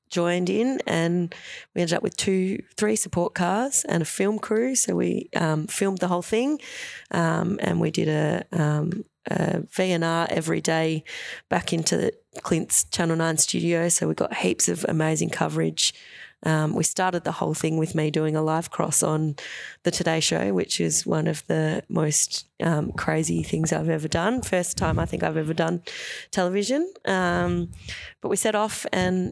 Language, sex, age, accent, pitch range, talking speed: English, female, 20-39, Australian, 155-185 Hz, 180 wpm